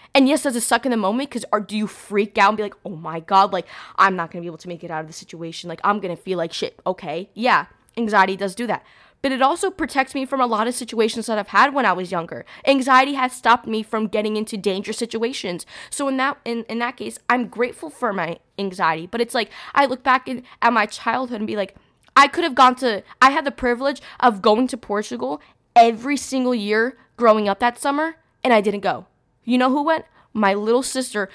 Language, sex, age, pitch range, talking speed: English, female, 10-29, 210-280 Hz, 240 wpm